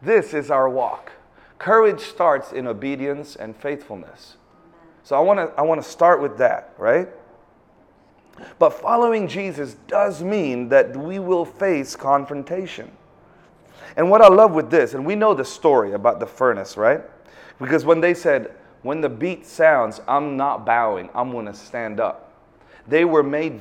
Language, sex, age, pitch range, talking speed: English, male, 30-49, 125-175 Hz, 160 wpm